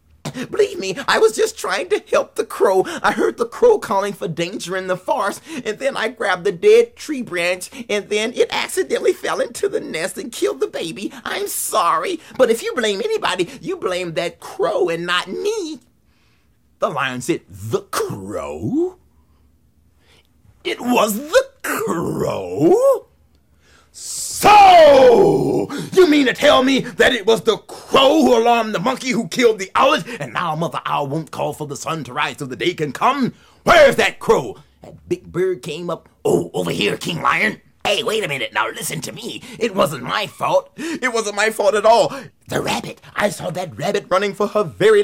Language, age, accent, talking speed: English, 30-49, American, 185 wpm